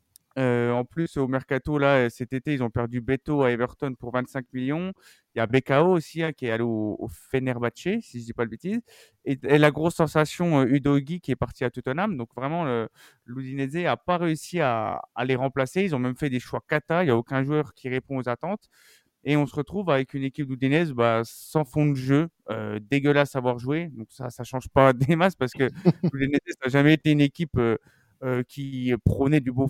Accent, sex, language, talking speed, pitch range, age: French, male, French, 230 wpm, 125-155 Hz, 20-39